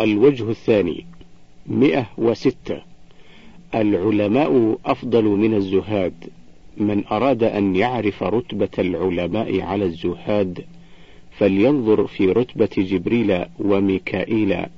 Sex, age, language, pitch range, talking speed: male, 50-69, Arabic, 90-110 Hz, 80 wpm